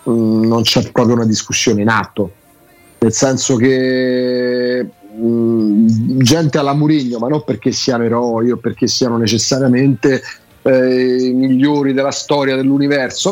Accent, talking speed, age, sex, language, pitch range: native, 135 wpm, 30-49, male, Italian, 125-150 Hz